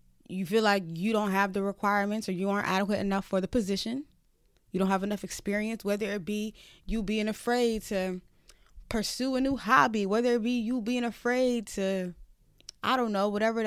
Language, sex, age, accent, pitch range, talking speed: English, female, 20-39, American, 170-210 Hz, 190 wpm